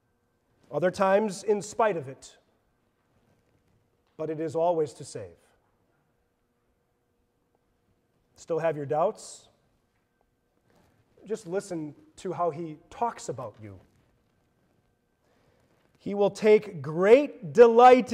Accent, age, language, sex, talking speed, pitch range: American, 30-49, English, male, 95 wpm, 155-230 Hz